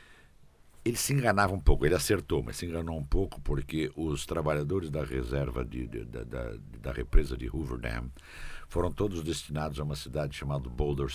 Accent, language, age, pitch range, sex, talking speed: Brazilian, Portuguese, 60-79, 70-85 Hz, male, 160 wpm